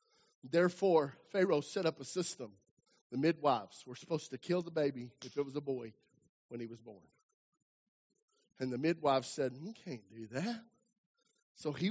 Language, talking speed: English, 165 wpm